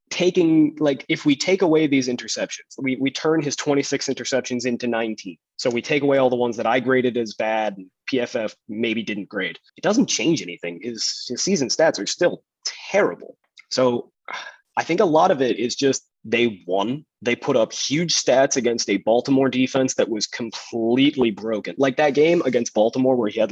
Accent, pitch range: American, 115-140 Hz